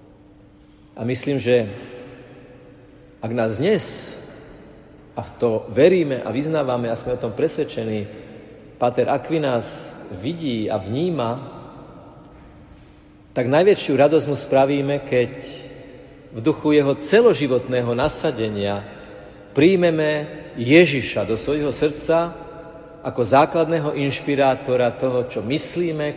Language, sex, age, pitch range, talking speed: Slovak, male, 50-69, 115-155 Hz, 100 wpm